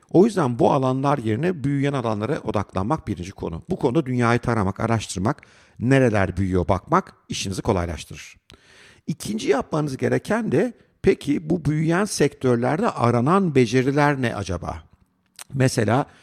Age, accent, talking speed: 50-69, native, 120 wpm